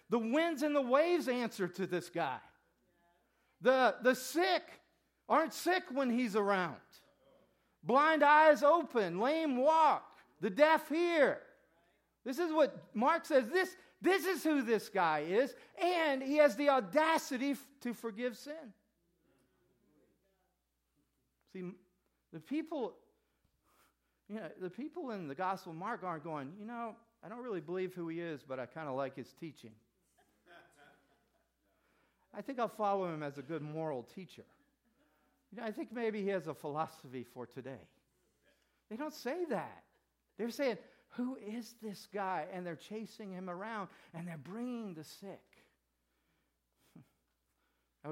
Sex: male